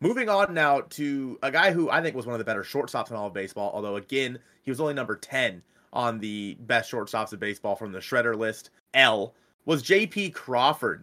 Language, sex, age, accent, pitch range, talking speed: English, male, 30-49, American, 110-145 Hz, 225 wpm